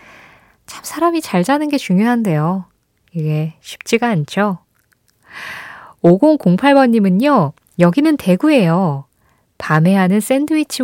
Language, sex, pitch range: Korean, female, 165-245 Hz